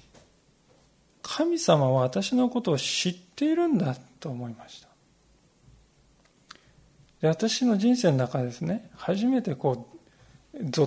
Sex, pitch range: male, 145-195 Hz